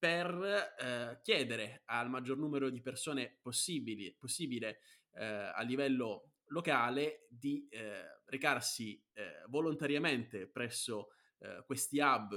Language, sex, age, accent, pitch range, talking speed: Italian, male, 20-39, native, 110-140 Hz, 105 wpm